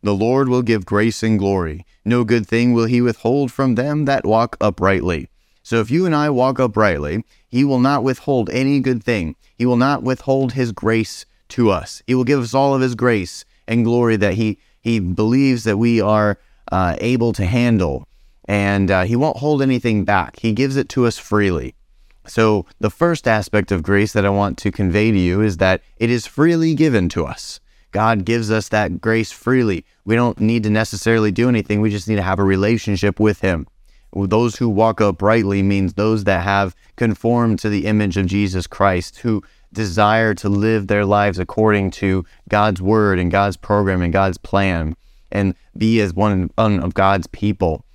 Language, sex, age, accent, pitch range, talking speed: English, male, 30-49, American, 100-120 Hz, 195 wpm